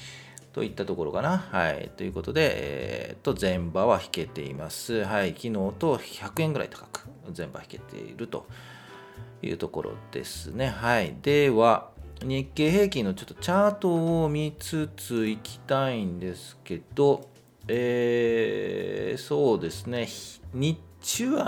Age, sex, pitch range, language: 40-59, male, 95-145 Hz, Japanese